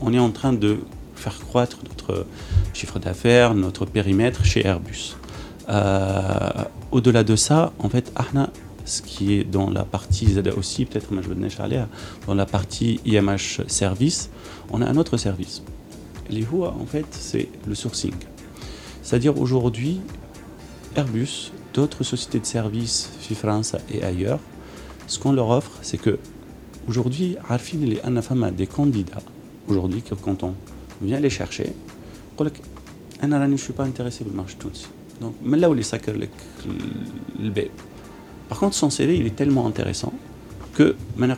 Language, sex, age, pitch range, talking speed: Arabic, male, 40-59, 100-125 Hz, 150 wpm